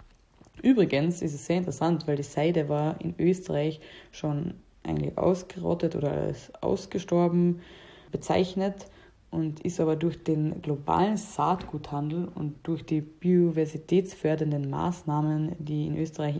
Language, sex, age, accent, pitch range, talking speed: German, female, 20-39, German, 150-180 Hz, 120 wpm